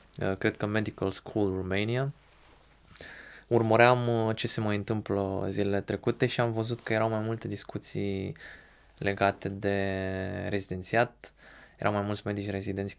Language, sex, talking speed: Romanian, male, 130 wpm